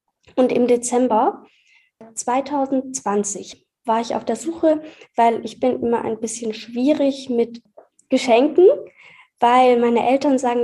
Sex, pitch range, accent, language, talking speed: female, 230-275 Hz, German, German, 125 wpm